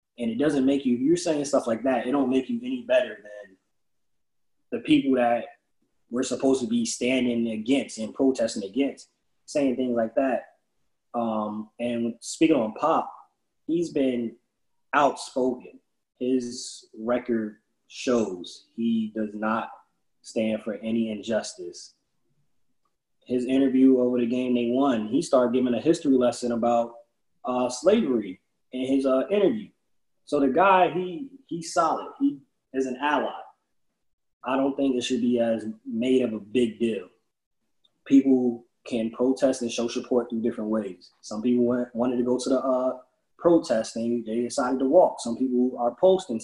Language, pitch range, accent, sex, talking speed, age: English, 115-135 Hz, American, male, 155 wpm, 20-39